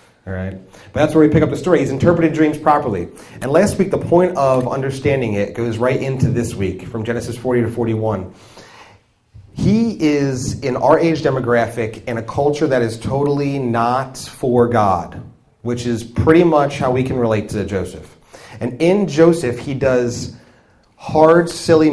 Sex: male